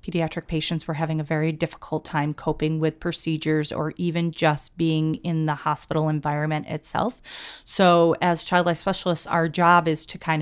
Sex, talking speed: female, 175 wpm